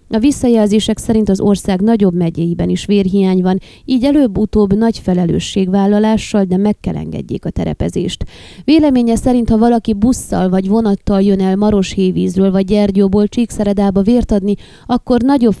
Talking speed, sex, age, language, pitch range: 140 wpm, female, 20-39, Hungarian, 185-225 Hz